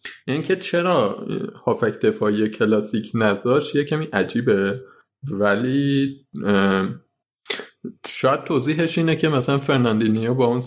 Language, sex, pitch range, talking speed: Persian, male, 95-135 Hz, 105 wpm